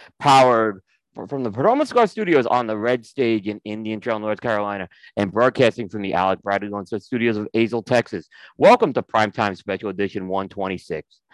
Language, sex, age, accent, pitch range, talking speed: English, male, 40-59, American, 105-130 Hz, 170 wpm